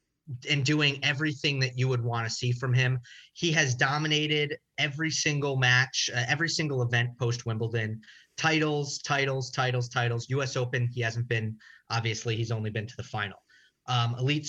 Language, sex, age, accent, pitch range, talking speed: English, male, 30-49, American, 120-150 Hz, 170 wpm